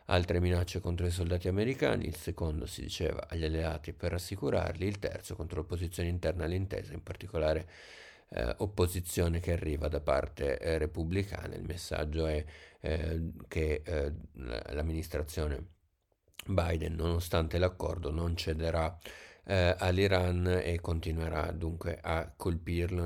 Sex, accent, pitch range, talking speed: male, native, 80-90 Hz, 130 wpm